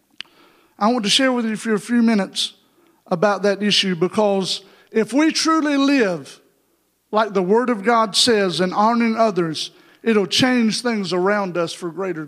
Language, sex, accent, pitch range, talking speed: English, male, American, 205-250 Hz, 170 wpm